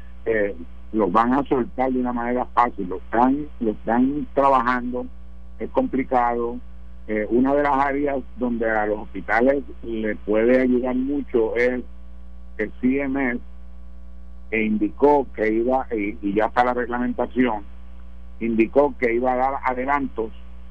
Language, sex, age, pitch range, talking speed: Spanish, male, 60-79, 100-135 Hz, 135 wpm